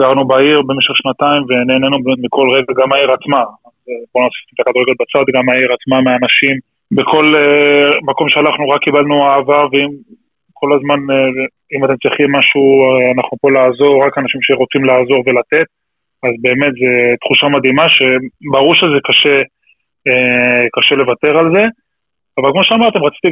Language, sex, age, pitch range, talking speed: Hebrew, male, 20-39, 125-140 Hz, 145 wpm